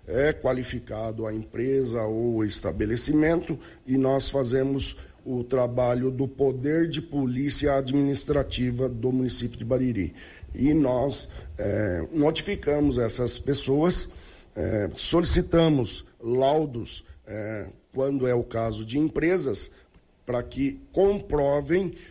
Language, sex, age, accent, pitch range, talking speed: Portuguese, male, 50-69, Brazilian, 120-145 Hz, 100 wpm